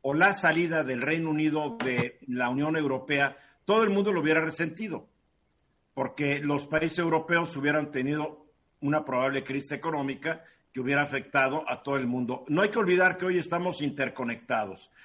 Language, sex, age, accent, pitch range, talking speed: Spanish, male, 50-69, Mexican, 145-185 Hz, 165 wpm